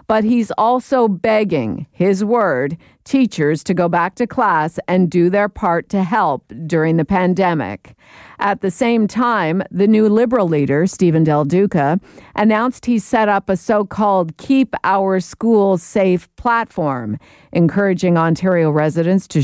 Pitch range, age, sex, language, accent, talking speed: 160-210 Hz, 50-69, female, English, American, 145 wpm